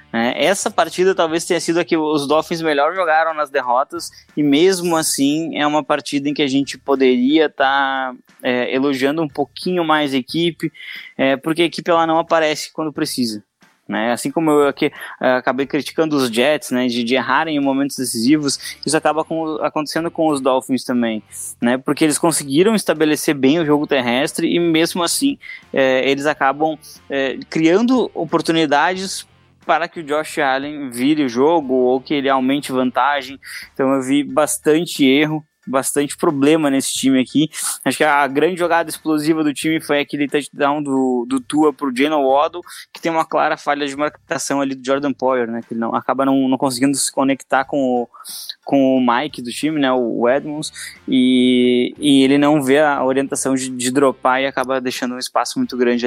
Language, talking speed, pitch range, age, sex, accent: English, 180 wpm, 130-160 Hz, 20-39, male, Brazilian